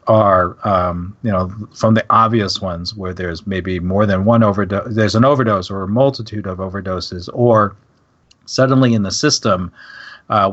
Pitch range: 95-115 Hz